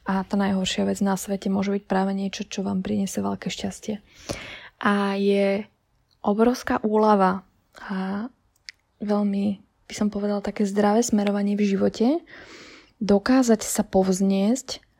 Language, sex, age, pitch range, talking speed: Slovak, female, 20-39, 195-225 Hz, 130 wpm